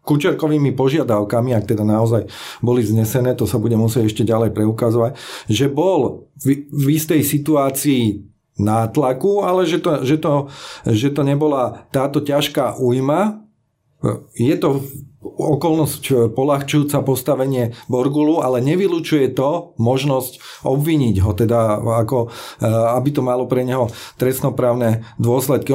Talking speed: 125 wpm